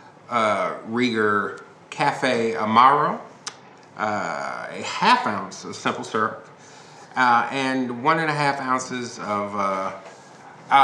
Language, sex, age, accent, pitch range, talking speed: English, male, 40-59, American, 110-140 Hz, 105 wpm